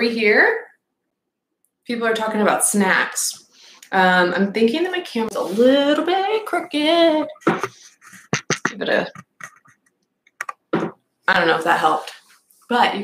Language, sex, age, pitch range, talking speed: English, female, 20-39, 185-240 Hz, 125 wpm